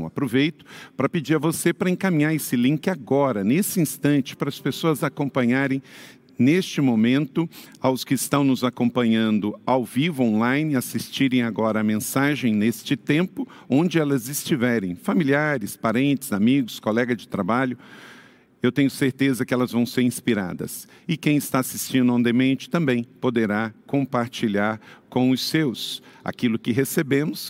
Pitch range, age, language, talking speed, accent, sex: 130-180 Hz, 50-69, Portuguese, 135 wpm, Brazilian, male